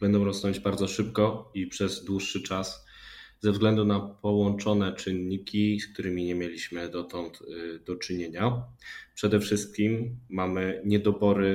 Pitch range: 90-105 Hz